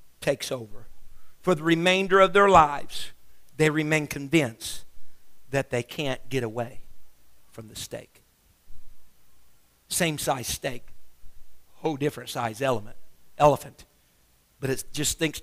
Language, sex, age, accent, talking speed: English, male, 50-69, American, 120 wpm